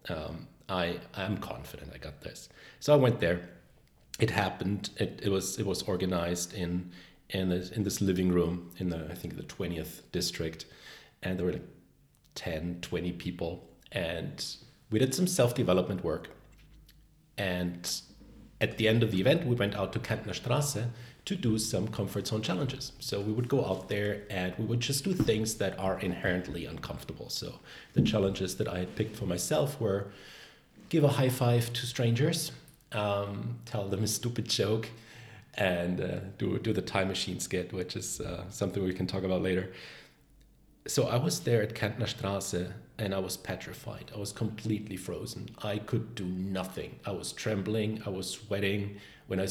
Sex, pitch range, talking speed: male, 90-115 Hz, 180 wpm